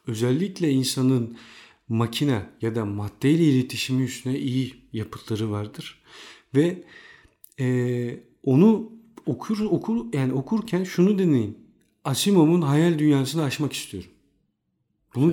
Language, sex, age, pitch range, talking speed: Turkish, male, 50-69, 115-155 Hz, 100 wpm